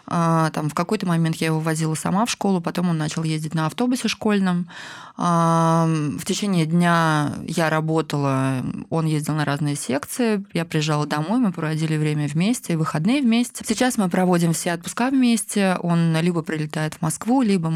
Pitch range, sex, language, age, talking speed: 160-190 Hz, female, Russian, 20-39, 160 wpm